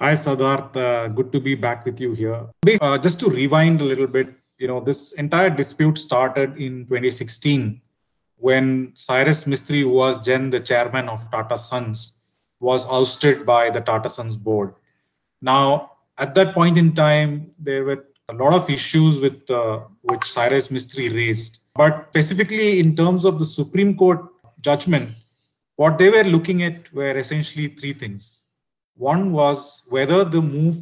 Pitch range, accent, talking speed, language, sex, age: 125-155 Hz, Indian, 165 wpm, English, male, 30-49